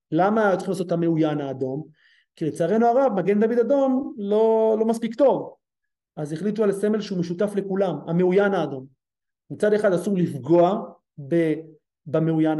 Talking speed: 115 wpm